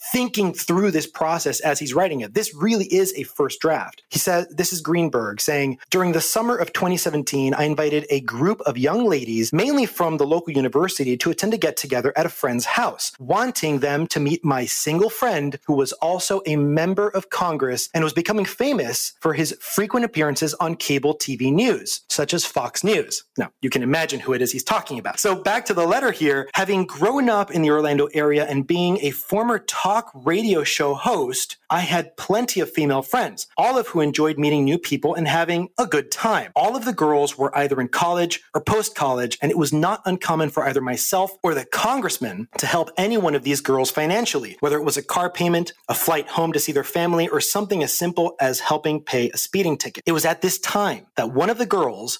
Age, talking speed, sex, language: 30-49, 215 wpm, male, English